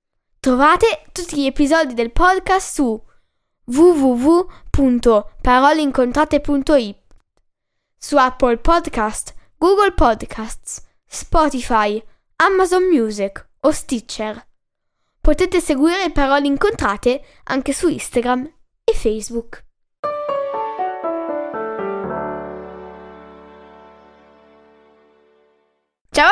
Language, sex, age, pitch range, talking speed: Italian, female, 10-29, 220-325 Hz, 65 wpm